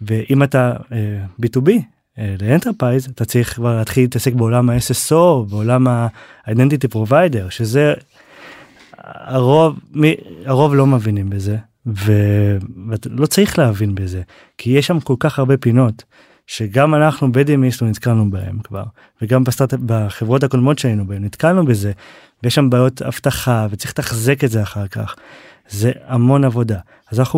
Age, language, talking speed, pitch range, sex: 20-39, Hebrew, 140 wpm, 110-140 Hz, male